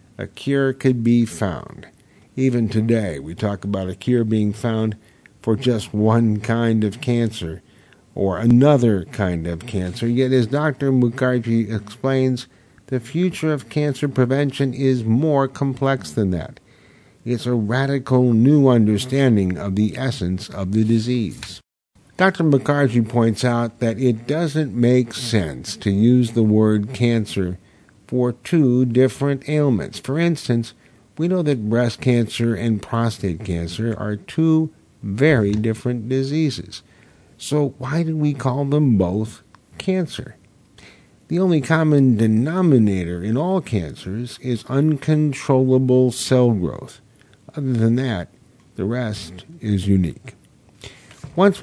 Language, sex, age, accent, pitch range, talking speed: English, male, 50-69, American, 110-135 Hz, 130 wpm